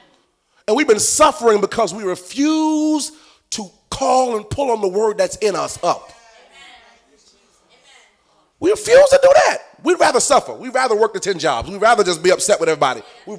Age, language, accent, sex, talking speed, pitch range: 30-49, English, American, male, 180 wpm, 250-335 Hz